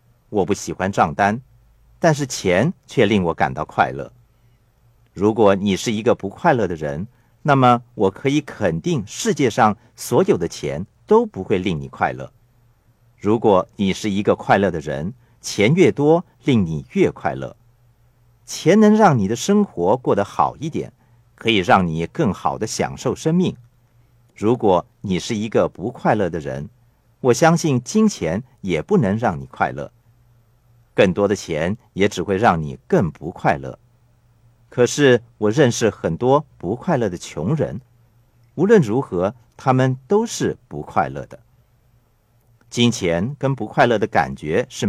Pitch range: 115-135 Hz